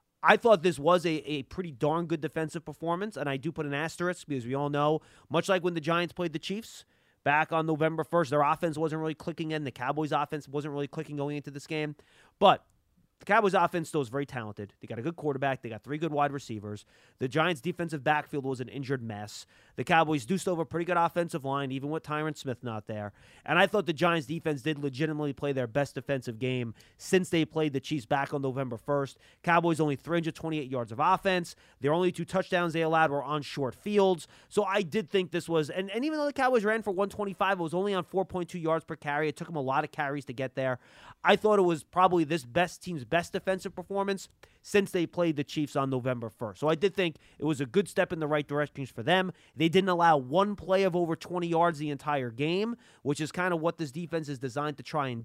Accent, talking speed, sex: American, 240 wpm, male